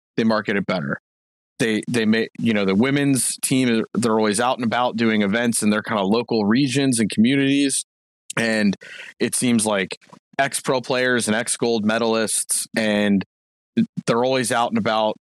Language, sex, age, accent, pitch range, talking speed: English, male, 30-49, American, 110-130 Hz, 165 wpm